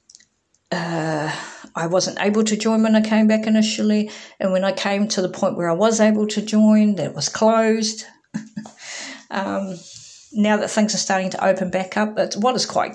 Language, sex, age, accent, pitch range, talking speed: English, female, 50-69, Australian, 170-215 Hz, 185 wpm